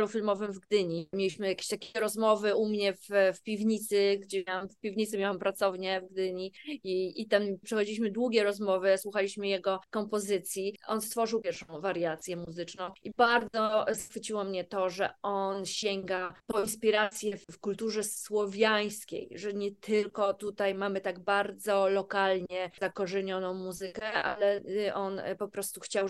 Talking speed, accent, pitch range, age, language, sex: 140 wpm, native, 195-220 Hz, 20-39, Polish, female